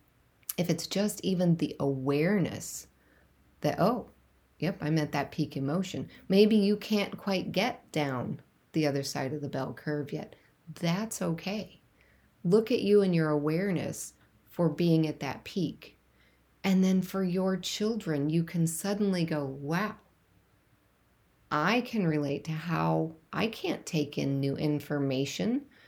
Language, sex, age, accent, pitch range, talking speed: English, female, 40-59, American, 150-195 Hz, 145 wpm